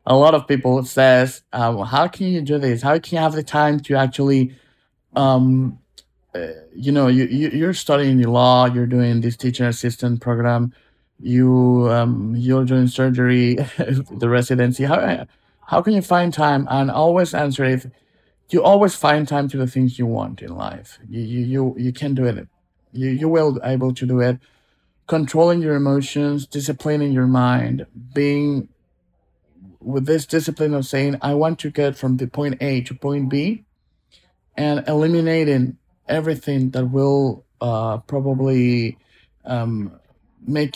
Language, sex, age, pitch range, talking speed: English, male, 50-69, 125-145 Hz, 165 wpm